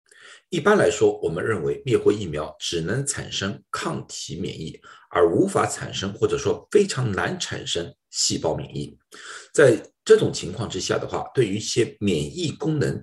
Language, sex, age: Chinese, male, 50-69